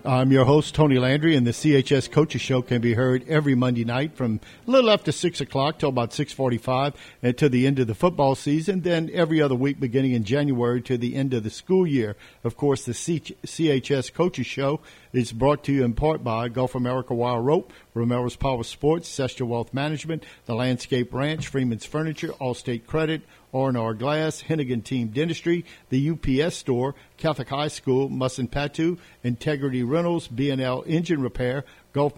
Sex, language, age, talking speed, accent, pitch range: male, English, 50-69, 175 wpm, American, 125-155 Hz